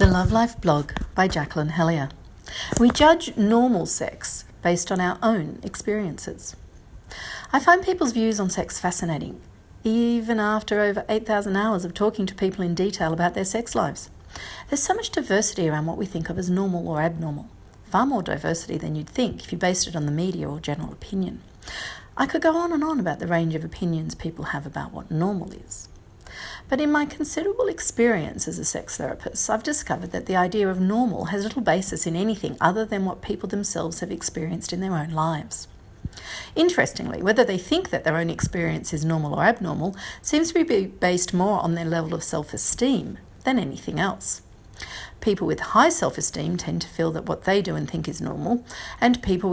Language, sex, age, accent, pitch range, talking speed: English, female, 40-59, Australian, 165-220 Hz, 190 wpm